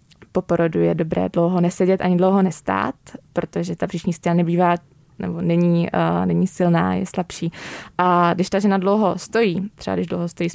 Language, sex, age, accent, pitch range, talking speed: Czech, female, 20-39, native, 170-190 Hz, 175 wpm